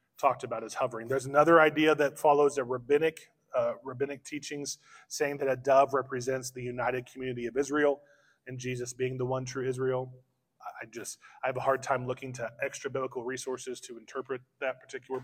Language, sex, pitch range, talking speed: English, male, 135-175 Hz, 185 wpm